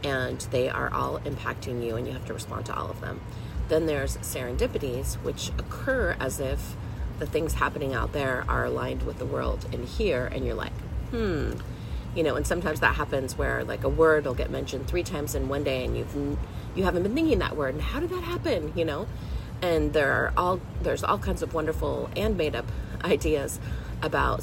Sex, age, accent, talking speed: female, 30-49, American, 205 wpm